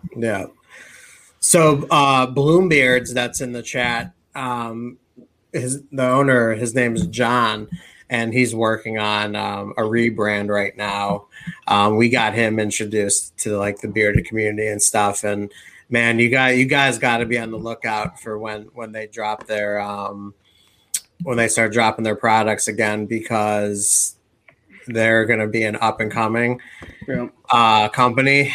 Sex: male